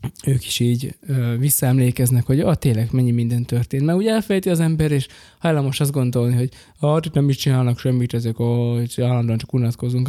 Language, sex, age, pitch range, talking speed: Hungarian, male, 20-39, 120-145 Hz, 190 wpm